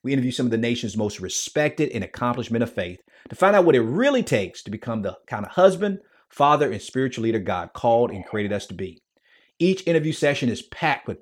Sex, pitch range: male, 120-170 Hz